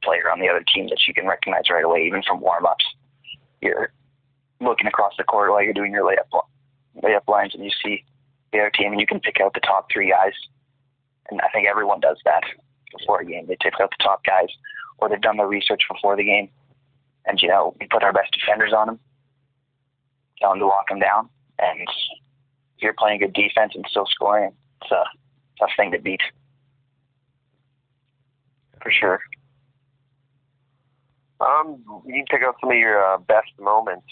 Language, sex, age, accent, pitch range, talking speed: English, male, 20-39, American, 110-135 Hz, 195 wpm